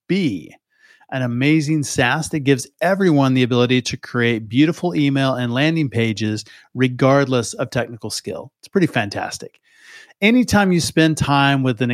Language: English